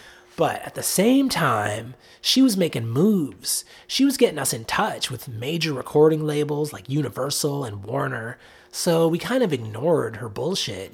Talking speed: 165 wpm